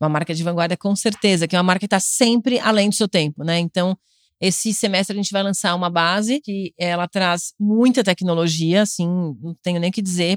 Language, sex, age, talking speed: Portuguese, female, 30-49, 225 wpm